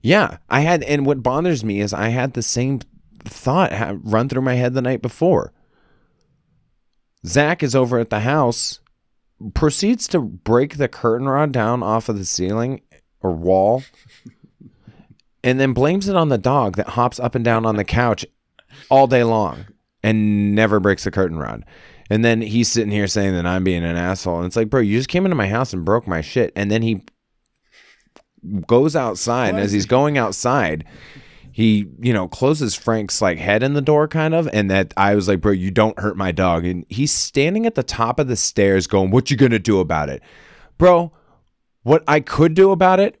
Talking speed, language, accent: 200 wpm, English, American